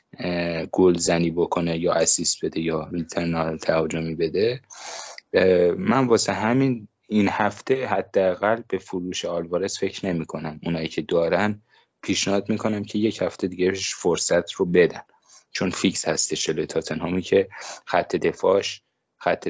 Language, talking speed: Persian, 130 wpm